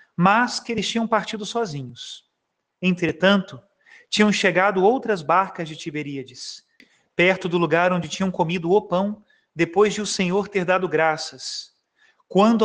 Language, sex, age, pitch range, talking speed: Portuguese, male, 40-59, 165-200 Hz, 140 wpm